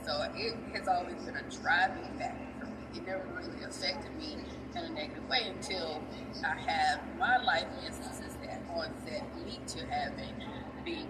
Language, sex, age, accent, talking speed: English, female, 20-39, American, 170 wpm